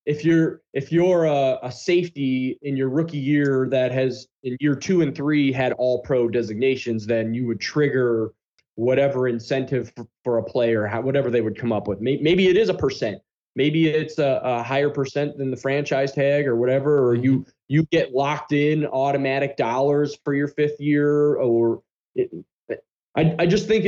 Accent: American